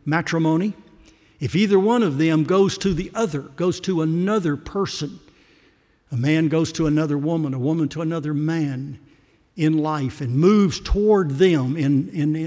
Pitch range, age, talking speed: 140-170 Hz, 60-79, 165 wpm